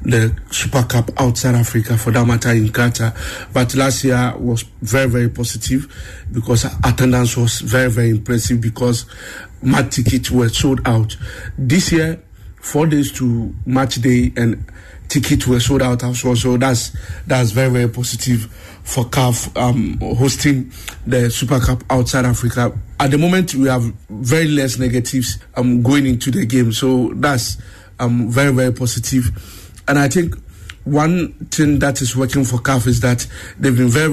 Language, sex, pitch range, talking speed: English, male, 115-135 Hz, 165 wpm